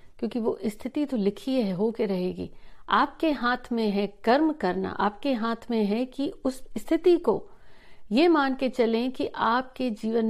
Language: Hindi